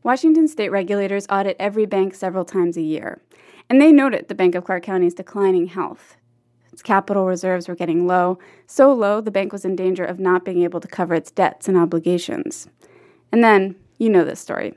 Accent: American